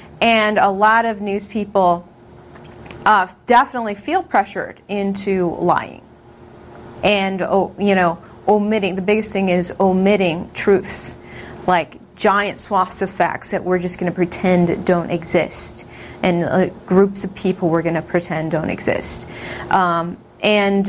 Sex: female